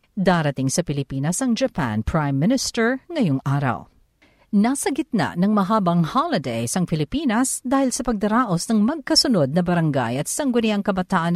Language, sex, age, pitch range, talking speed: Filipino, female, 50-69, 170-245 Hz, 135 wpm